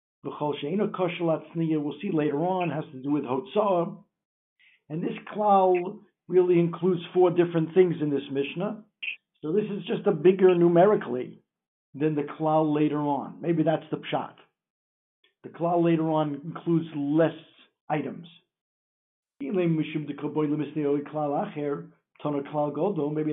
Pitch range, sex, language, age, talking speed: 150-185 Hz, male, English, 60-79, 115 wpm